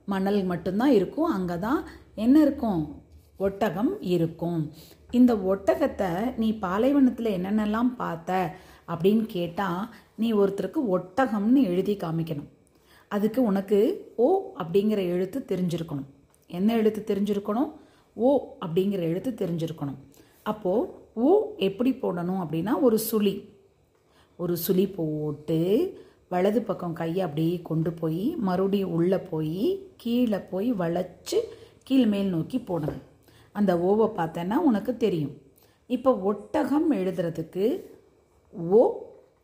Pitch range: 175-255 Hz